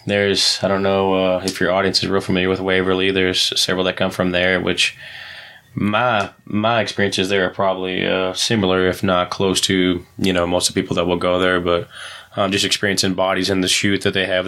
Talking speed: 225 wpm